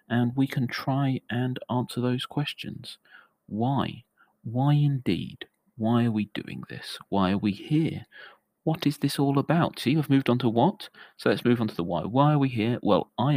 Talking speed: 195 wpm